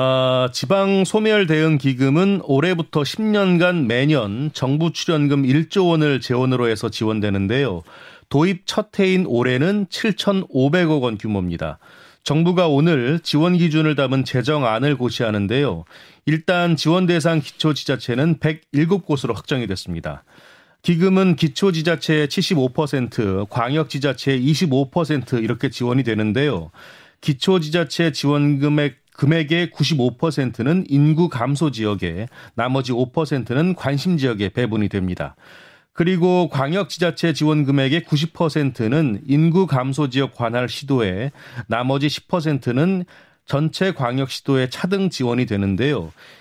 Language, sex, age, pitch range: Korean, male, 30-49, 125-165 Hz